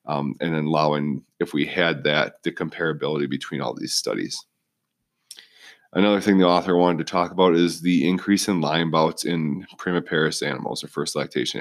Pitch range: 80-90 Hz